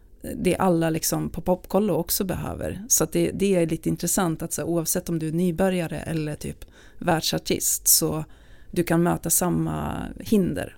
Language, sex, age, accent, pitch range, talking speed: Swedish, female, 30-49, native, 165-190 Hz, 175 wpm